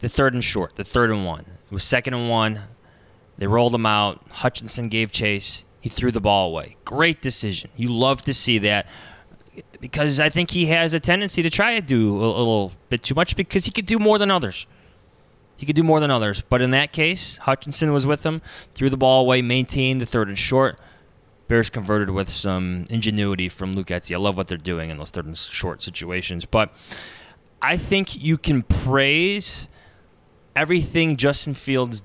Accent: American